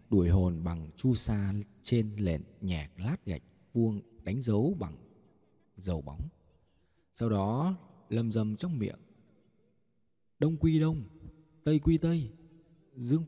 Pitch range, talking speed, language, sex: 100-155 Hz, 130 wpm, Vietnamese, male